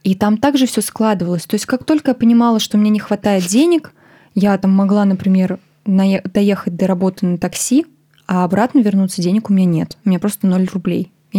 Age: 20-39